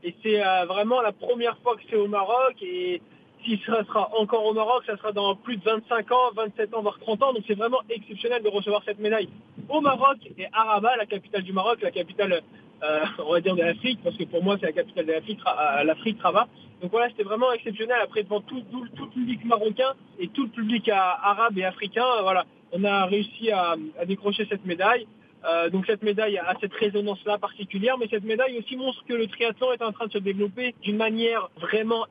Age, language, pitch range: 20-39, Arabic, 205-240 Hz